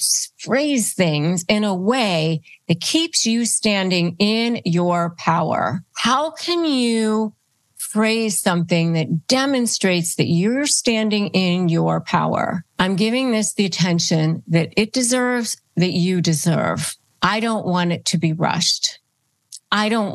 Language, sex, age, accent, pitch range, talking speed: English, female, 40-59, American, 165-215 Hz, 135 wpm